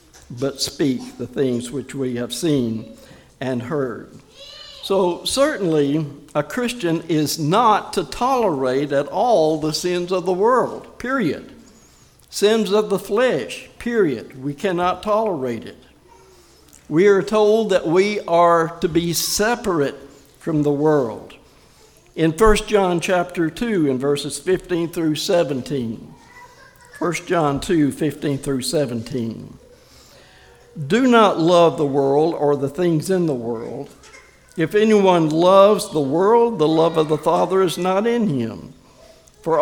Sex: male